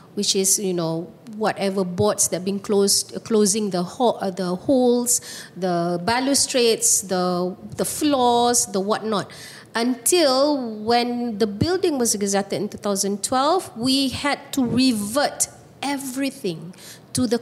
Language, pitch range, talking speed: English, 195-240 Hz, 140 wpm